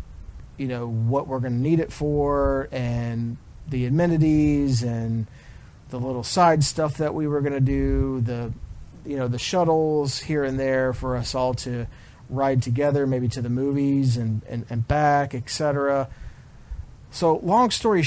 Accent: American